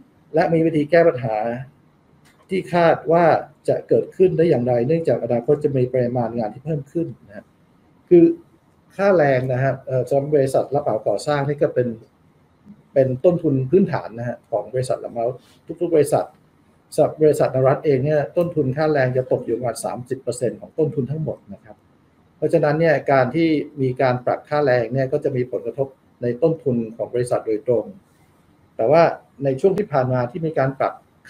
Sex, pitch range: male, 125-160 Hz